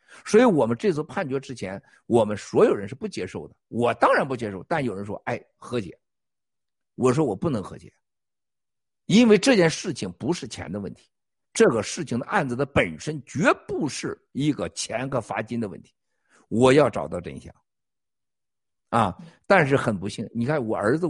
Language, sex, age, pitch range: Chinese, male, 50-69, 110-165 Hz